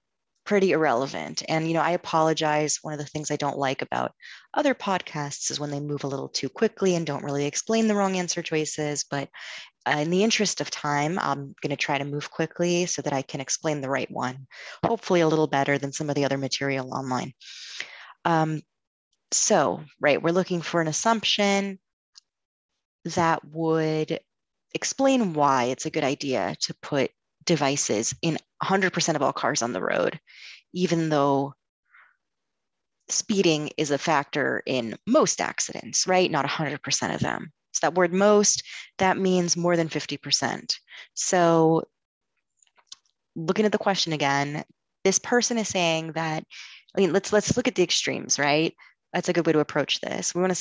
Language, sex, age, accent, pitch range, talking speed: English, female, 30-49, American, 145-185 Hz, 170 wpm